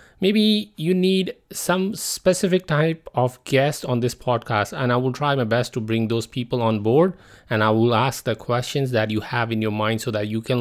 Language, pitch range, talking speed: English, 115-140 Hz, 220 wpm